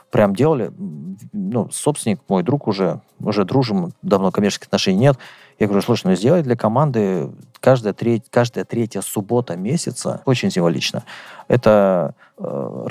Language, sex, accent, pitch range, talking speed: Russian, male, native, 105-130 Hz, 130 wpm